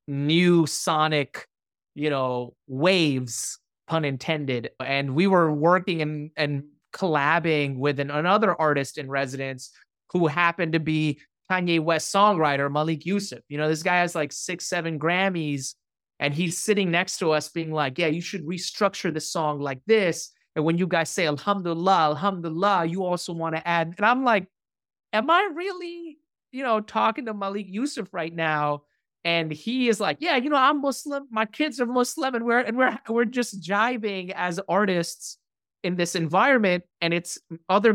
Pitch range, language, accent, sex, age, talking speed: 155-215 Hz, English, American, male, 30-49, 170 wpm